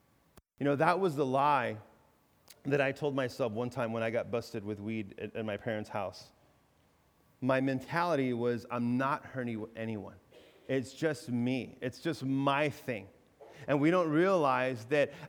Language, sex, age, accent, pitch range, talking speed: English, male, 30-49, American, 130-170 Hz, 165 wpm